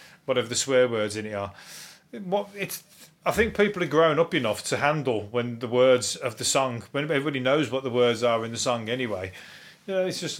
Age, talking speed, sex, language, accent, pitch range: 30-49, 225 wpm, male, English, British, 125-155 Hz